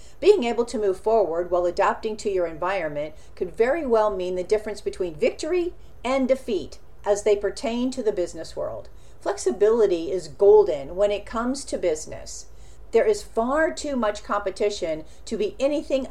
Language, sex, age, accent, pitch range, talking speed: English, female, 50-69, American, 190-275 Hz, 165 wpm